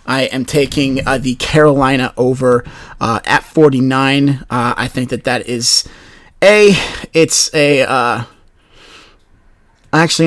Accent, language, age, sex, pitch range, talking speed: American, English, 30-49, male, 120-150 Hz, 125 wpm